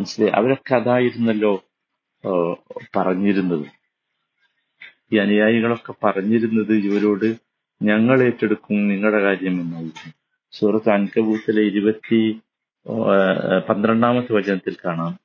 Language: Malayalam